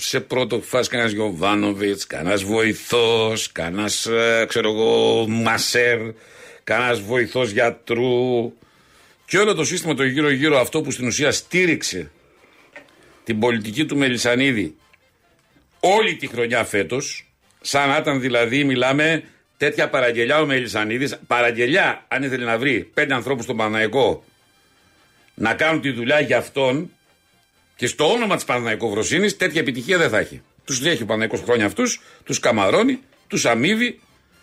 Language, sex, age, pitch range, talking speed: Greek, male, 60-79, 110-155 Hz, 135 wpm